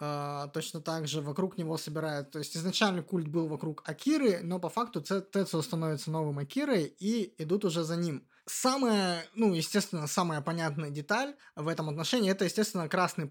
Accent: native